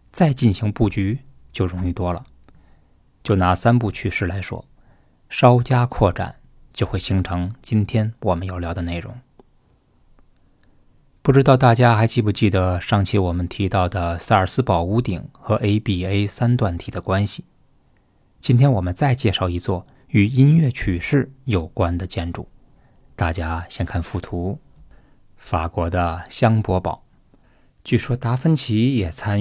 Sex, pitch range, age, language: male, 90-120 Hz, 20-39, Chinese